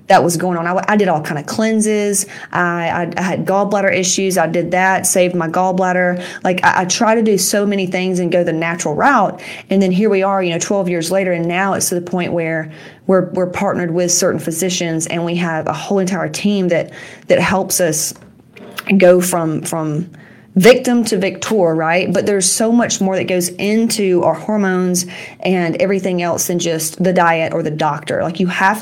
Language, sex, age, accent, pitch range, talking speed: English, female, 30-49, American, 175-200 Hz, 210 wpm